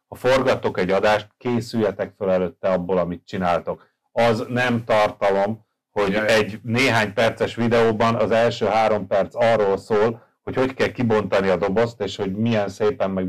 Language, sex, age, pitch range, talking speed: Hungarian, male, 30-49, 100-120 Hz, 160 wpm